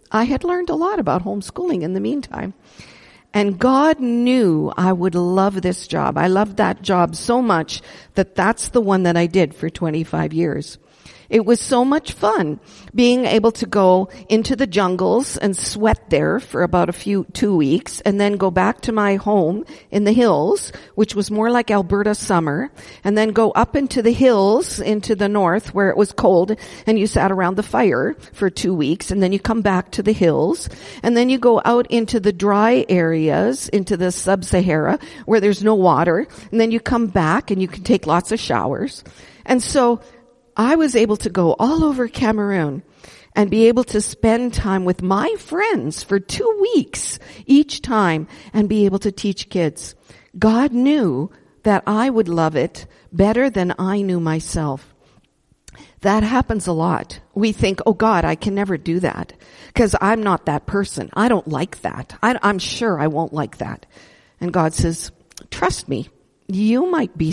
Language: English